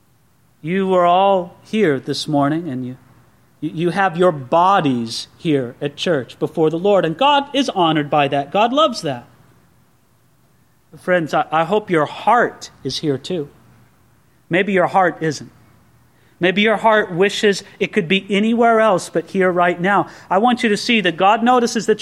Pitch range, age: 155-225 Hz, 40-59